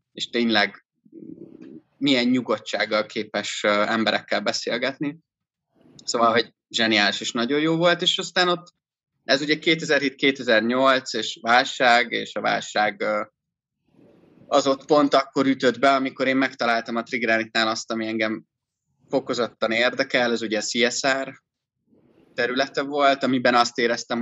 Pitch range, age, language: 110-135 Hz, 30-49, Hungarian